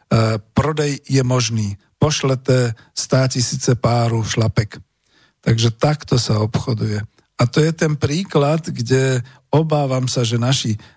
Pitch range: 110-135 Hz